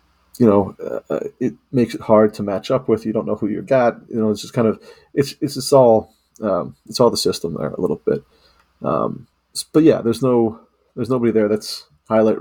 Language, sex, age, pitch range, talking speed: English, male, 30-49, 100-115 Hz, 220 wpm